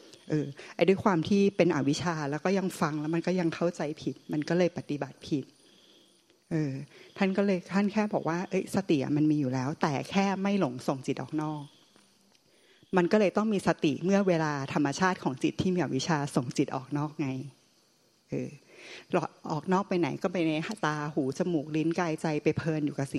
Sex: female